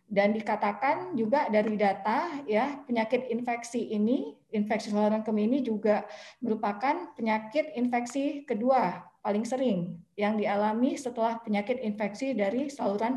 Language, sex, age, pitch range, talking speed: Indonesian, female, 20-39, 195-240 Hz, 125 wpm